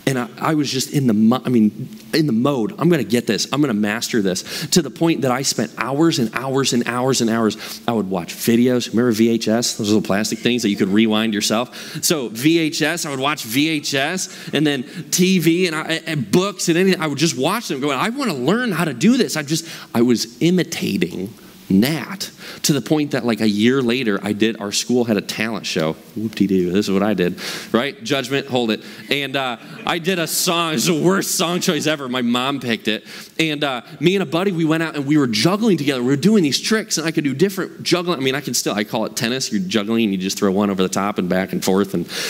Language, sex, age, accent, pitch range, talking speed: English, male, 30-49, American, 115-170 Hz, 250 wpm